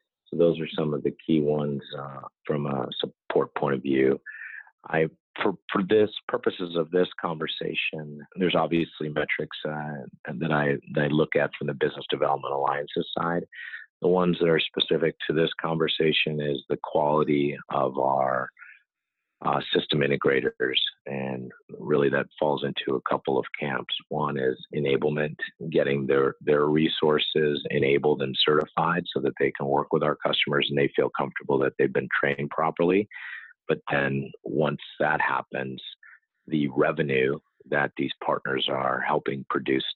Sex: male